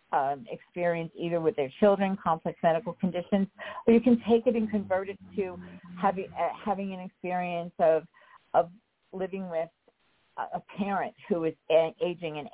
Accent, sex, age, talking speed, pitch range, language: American, female, 50-69, 165 wpm, 160-200 Hz, English